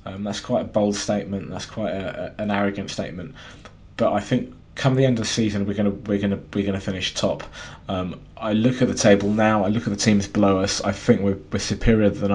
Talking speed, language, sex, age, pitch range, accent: 245 wpm, English, male, 20-39, 95-110 Hz, British